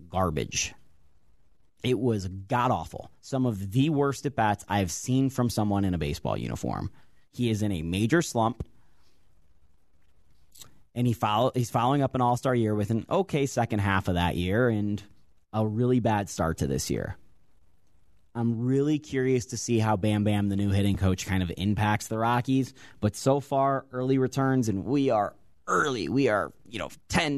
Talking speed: 175 wpm